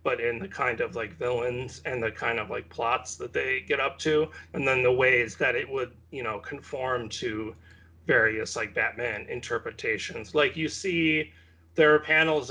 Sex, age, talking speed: male, 40-59, 185 wpm